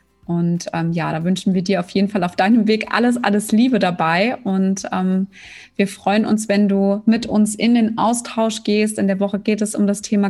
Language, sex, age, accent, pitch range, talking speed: German, female, 20-39, German, 190-215 Hz, 220 wpm